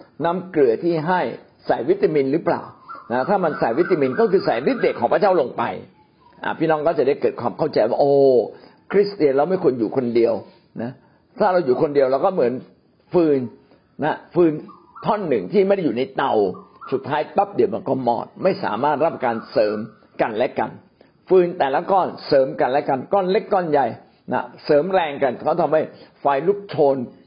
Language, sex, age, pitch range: Thai, male, 60-79, 135-200 Hz